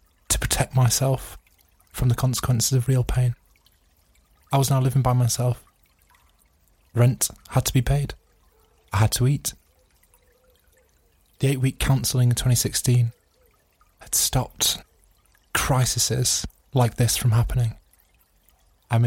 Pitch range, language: 85-130 Hz, English